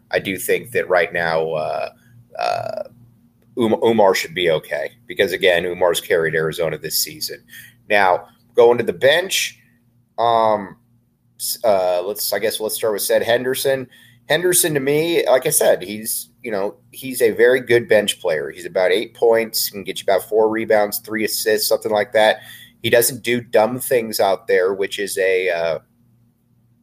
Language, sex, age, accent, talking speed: English, male, 30-49, American, 170 wpm